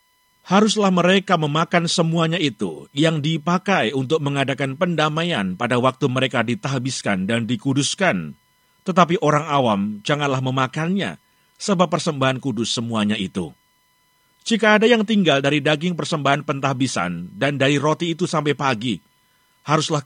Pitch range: 130-170 Hz